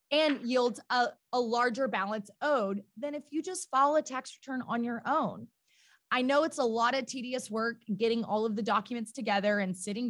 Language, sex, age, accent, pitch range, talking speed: English, female, 20-39, American, 225-300 Hz, 195 wpm